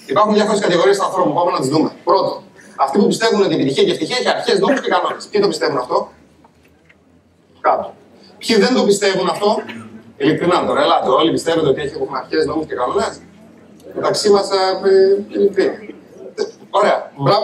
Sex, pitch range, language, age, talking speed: male, 195-270 Hz, Greek, 30-49, 160 wpm